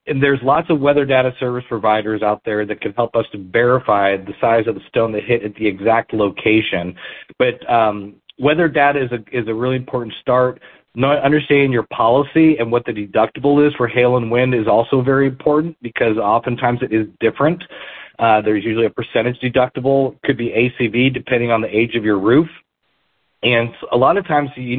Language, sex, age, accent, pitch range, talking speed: English, male, 40-59, American, 115-135 Hz, 200 wpm